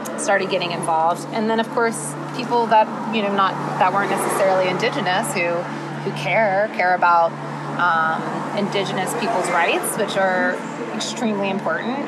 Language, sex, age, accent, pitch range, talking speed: English, female, 20-39, American, 170-200 Hz, 145 wpm